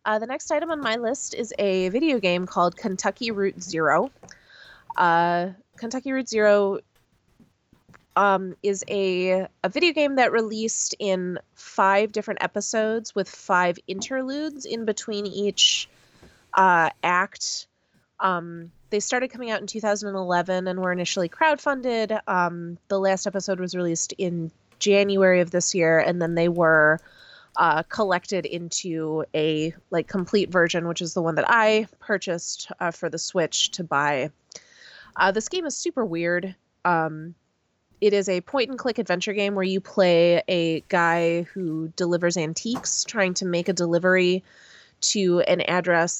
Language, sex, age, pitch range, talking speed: English, female, 20-39, 175-215 Hz, 150 wpm